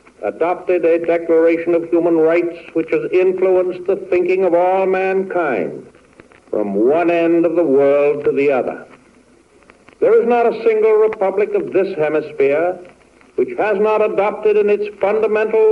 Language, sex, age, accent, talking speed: English, male, 60-79, American, 150 wpm